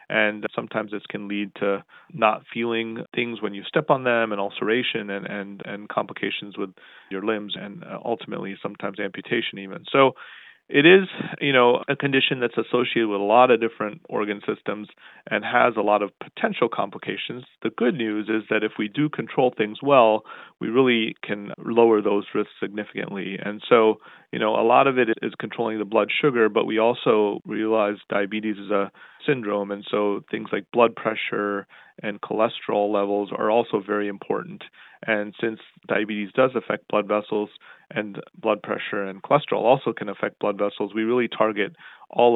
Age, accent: 40-59, American